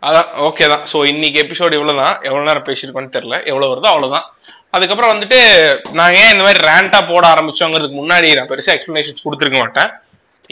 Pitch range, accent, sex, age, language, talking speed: 155-210 Hz, native, male, 20-39, Tamil, 170 wpm